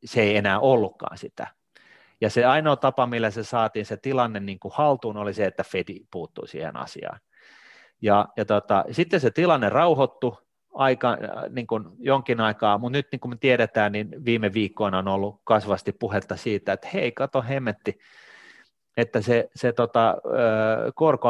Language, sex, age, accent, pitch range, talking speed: Finnish, male, 30-49, native, 105-135 Hz, 160 wpm